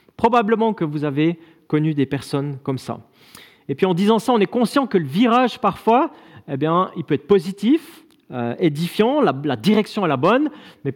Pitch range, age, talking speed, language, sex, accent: 150-215 Hz, 40-59, 195 wpm, French, male, French